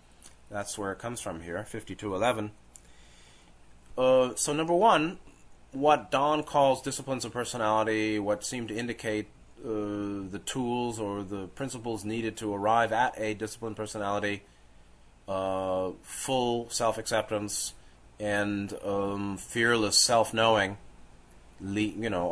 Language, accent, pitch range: English, American, 85-130 Hz